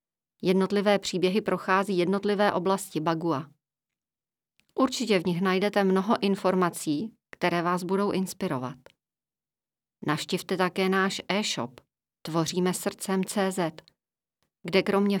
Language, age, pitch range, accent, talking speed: Czech, 40-59, 170-205 Hz, native, 95 wpm